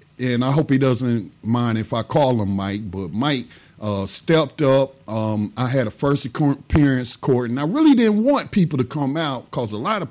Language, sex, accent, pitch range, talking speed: English, male, American, 110-150 Hz, 215 wpm